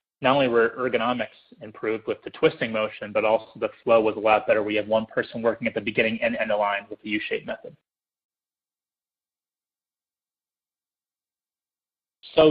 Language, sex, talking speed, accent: English, male, 165 wpm, American